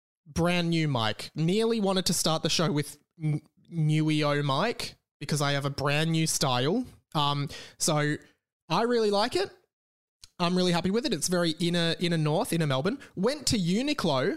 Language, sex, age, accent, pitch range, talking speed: English, male, 20-39, Australian, 130-175 Hz, 175 wpm